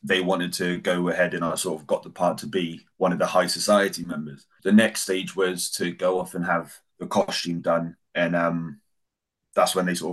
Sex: male